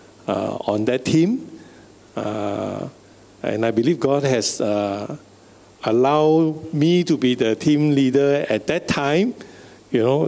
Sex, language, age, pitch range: male, English, 50-69, 105-145 Hz